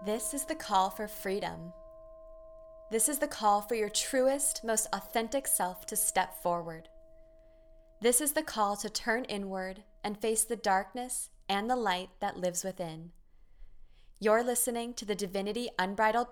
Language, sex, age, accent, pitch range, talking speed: English, female, 20-39, American, 180-225 Hz, 155 wpm